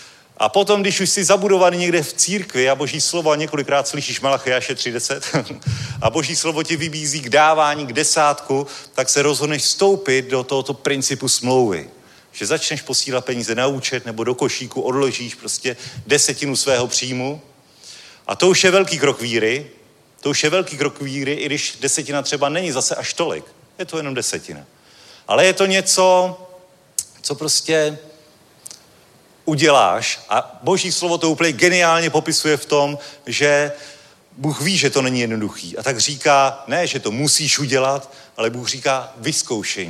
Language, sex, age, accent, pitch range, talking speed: Czech, male, 40-59, native, 130-155 Hz, 160 wpm